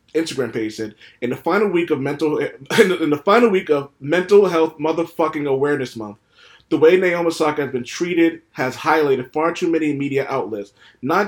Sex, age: male, 30-49